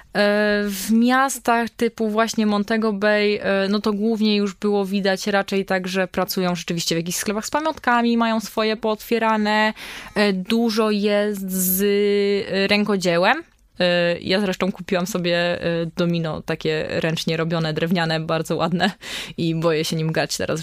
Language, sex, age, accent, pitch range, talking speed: Polish, female, 20-39, native, 170-210 Hz, 135 wpm